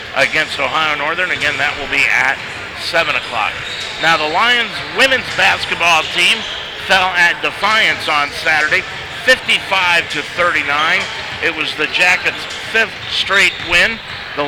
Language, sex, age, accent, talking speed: English, male, 50-69, American, 135 wpm